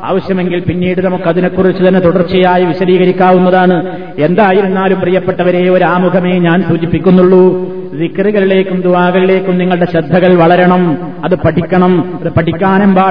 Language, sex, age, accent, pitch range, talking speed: Malayalam, male, 30-49, native, 165-185 Hz, 90 wpm